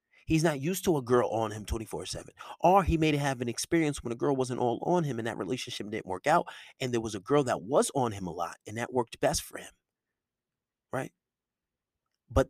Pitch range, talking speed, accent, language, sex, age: 140-195 Hz, 225 wpm, American, English, male, 30-49